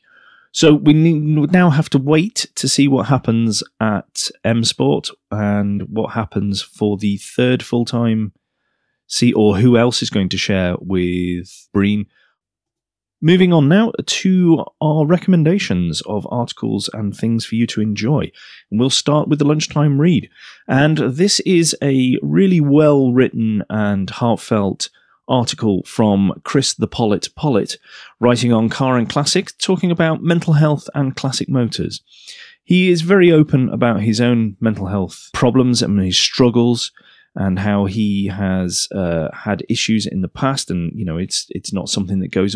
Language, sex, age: English, male, 30-49